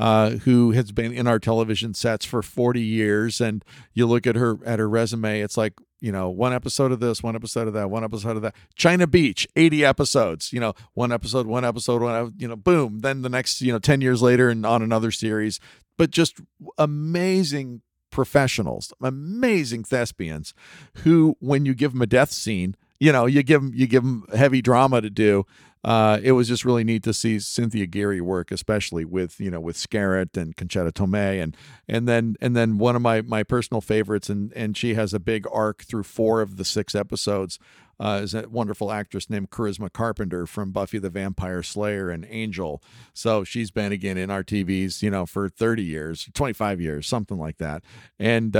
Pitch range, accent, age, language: 100-120 Hz, American, 50-69, English